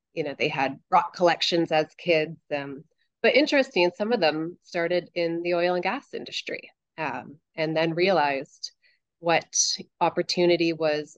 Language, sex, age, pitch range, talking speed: English, female, 30-49, 155-190 Hz, 145 wpm